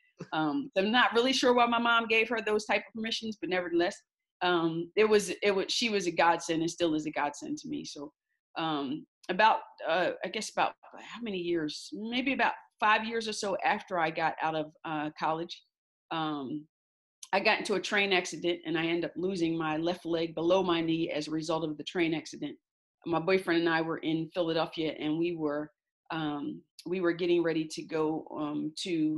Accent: American